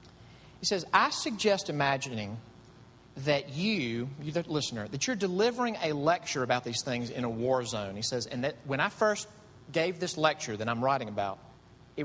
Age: 40-59